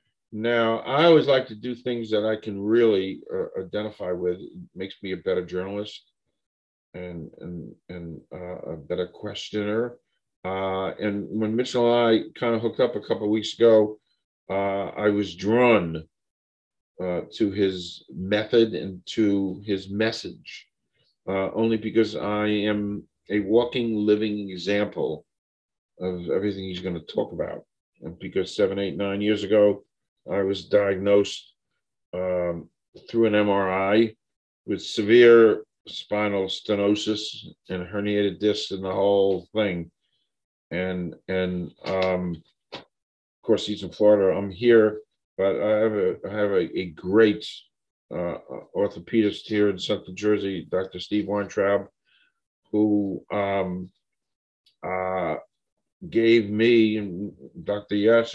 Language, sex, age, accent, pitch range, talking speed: English, male, 50-69, American, 95-110 Hz, 135 wpm